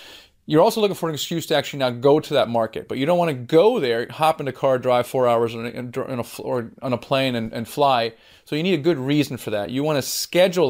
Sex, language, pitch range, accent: male, English, 120-145 Hz, American